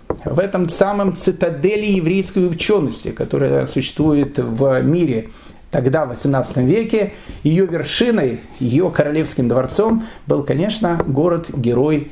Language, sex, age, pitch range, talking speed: Russian, male, 40-59, 135-190 Hz, 110 wpm